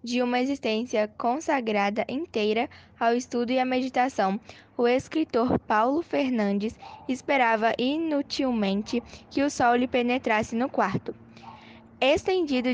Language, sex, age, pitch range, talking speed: Portuguese, female, 10-29, 220-265 Hz, 115 wpm